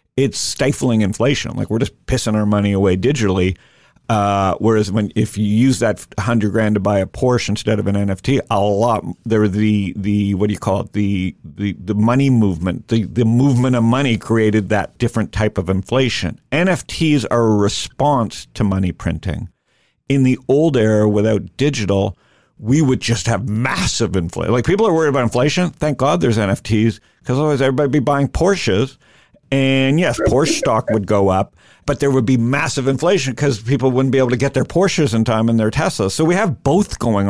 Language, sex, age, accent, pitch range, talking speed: English, male, 50-69, American, 105-135 Hz, 195 wpm